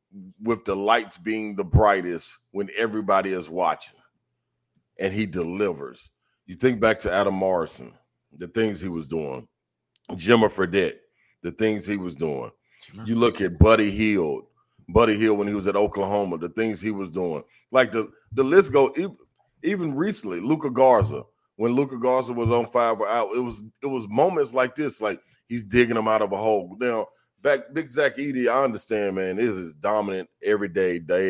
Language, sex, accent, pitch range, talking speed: English, male, American, 90-120 Hz, 175 wpm